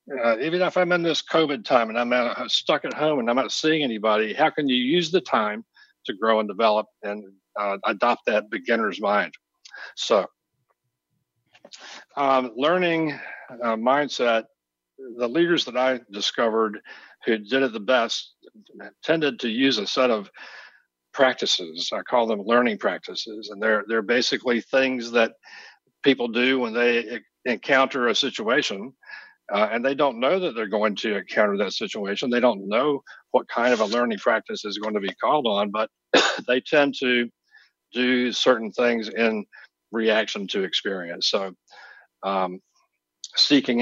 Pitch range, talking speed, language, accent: 110-135 Hz, 160 wpm, English, American